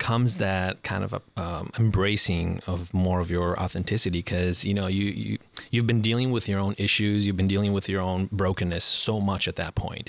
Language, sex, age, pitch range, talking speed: English, male, 30-49, 95-110 Hz, 220 wpm